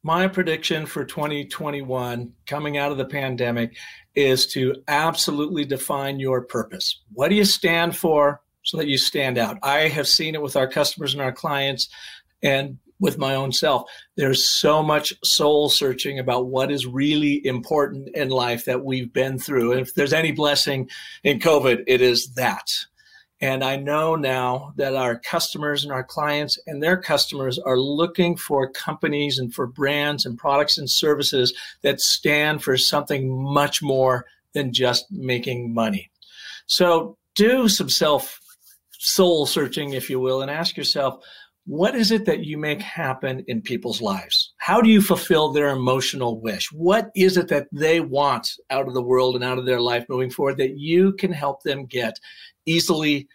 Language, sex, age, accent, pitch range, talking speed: English, male, 50-69, American, 130-160 Hz, 170 wpm